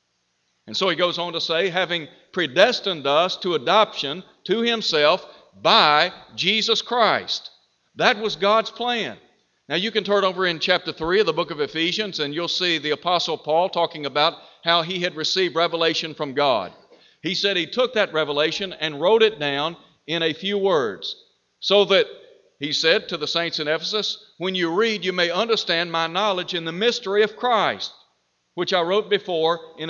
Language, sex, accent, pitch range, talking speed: English, male, American, 155-205 Hz, 180 wpm